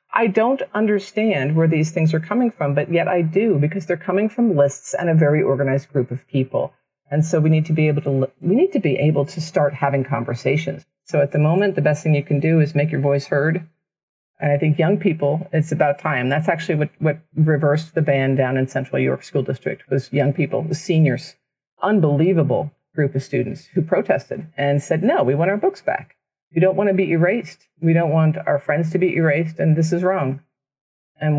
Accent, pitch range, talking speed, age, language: American, 145-175 Hz, 220 wpm, 40-59, English